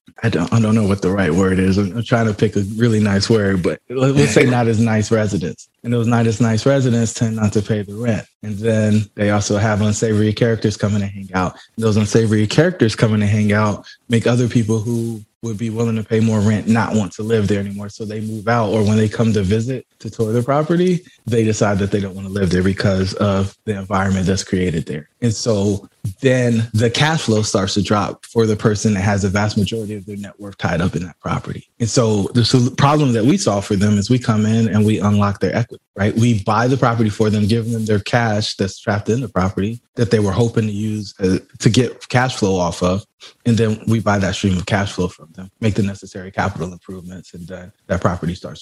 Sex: male